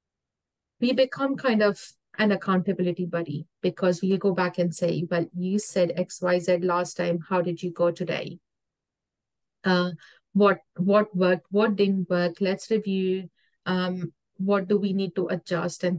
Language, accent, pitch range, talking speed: English, Indian, 175-195 Hz, 160 wpm